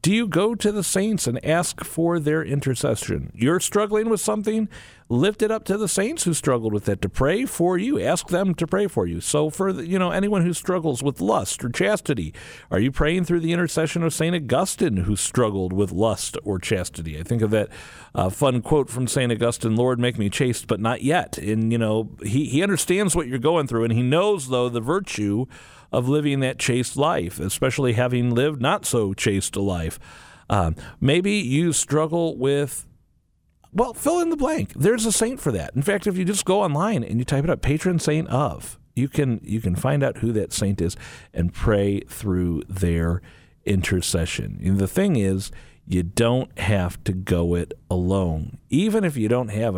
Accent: American